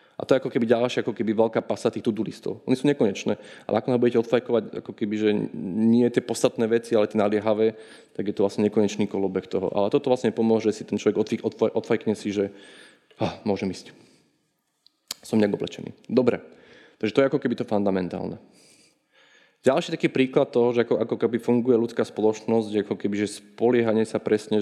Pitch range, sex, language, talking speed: 105-125 Hz, male, Czech, 195 wpm